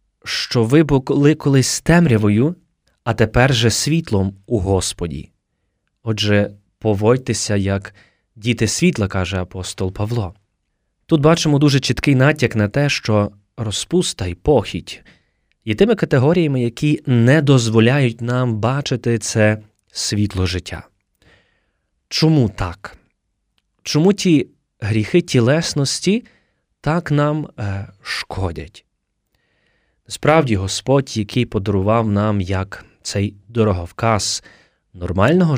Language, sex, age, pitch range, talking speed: Ukrainian, male, 20-39, 100-145 Hz, 100 wpm